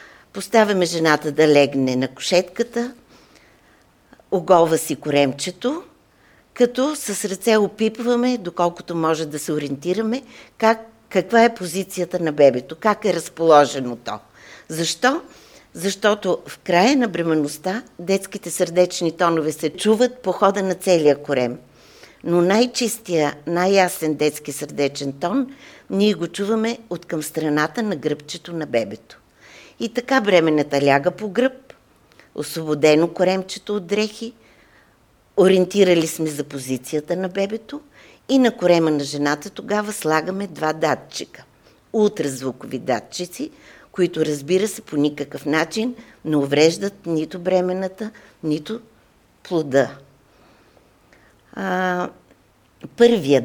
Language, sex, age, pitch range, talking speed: Bulgarian, female, 50-69, 155-215 Hz, 110 wpm